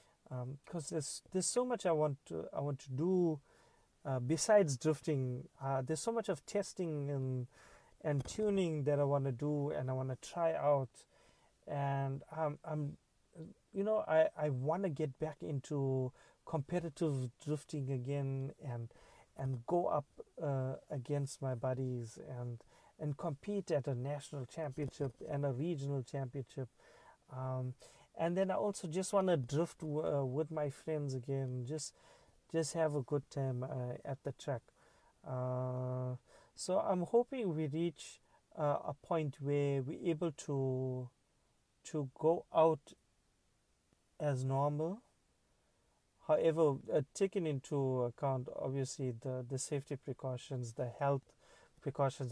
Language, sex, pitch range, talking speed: English, male, 130-160 Hz, 145 wpm